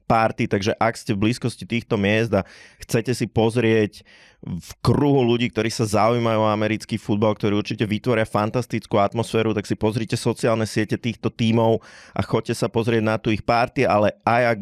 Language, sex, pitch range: Slovak, male, 105-125 Hz